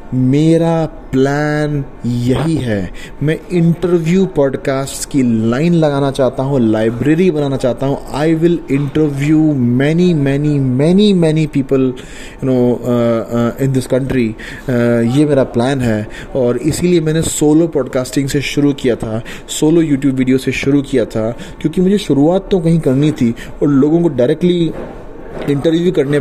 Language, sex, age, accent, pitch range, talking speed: English, male, 30-49, Indian, 125-155 Hz, 115 wpm